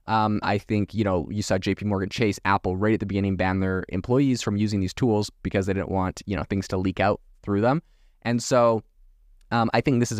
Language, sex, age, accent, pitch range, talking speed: English, male, 20-39, American, 95-115 Hz, 240 wpm